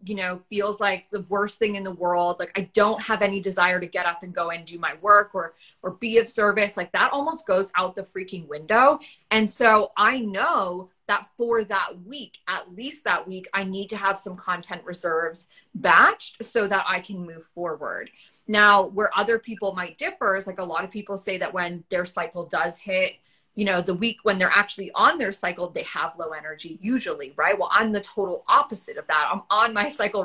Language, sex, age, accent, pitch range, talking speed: English, female, 30-49, American, 185-220 Hz, 220 wpm